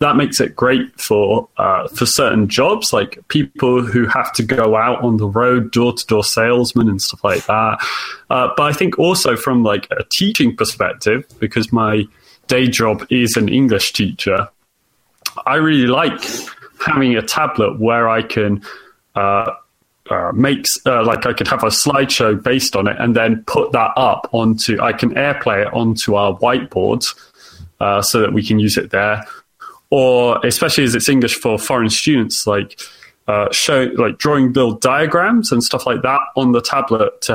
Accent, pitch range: British, 110-135 Hz